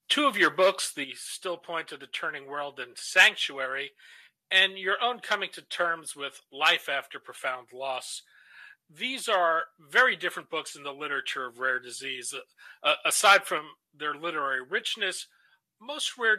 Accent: American